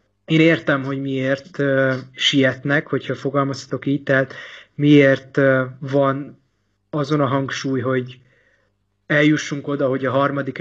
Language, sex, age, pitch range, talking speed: Hungarian, male, 30-49, 130-150 Hz, 115 wpm